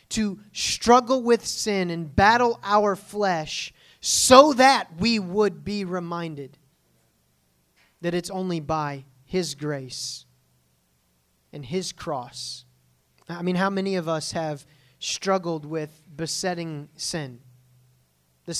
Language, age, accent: English, 30-49, American